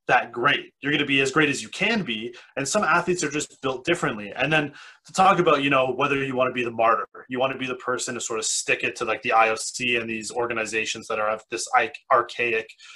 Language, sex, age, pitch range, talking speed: English, male, 30-49, 120-145 Hz, 260 wpm